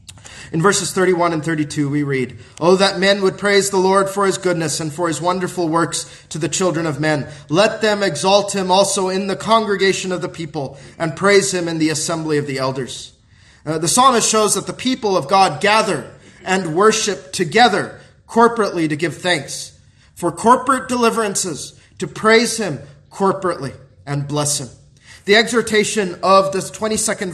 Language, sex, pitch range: English, male, 150-195 Hz